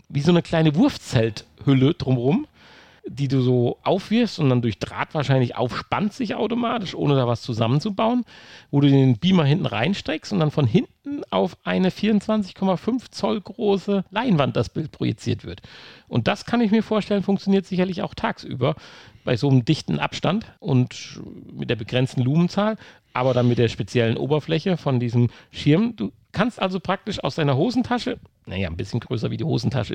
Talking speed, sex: 170 wpm, male